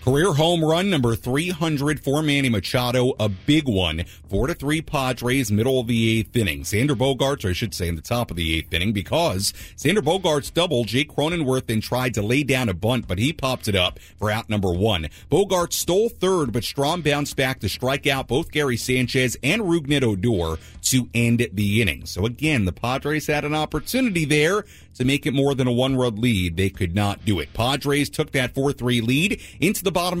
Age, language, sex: 40-59, English, male